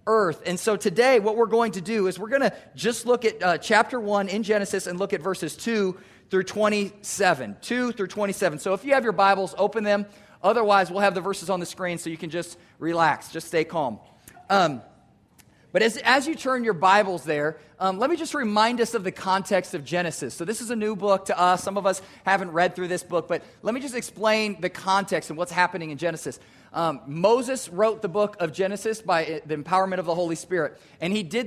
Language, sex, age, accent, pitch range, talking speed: English, male, 40-59, American, 175-220 Hz, 230 wpm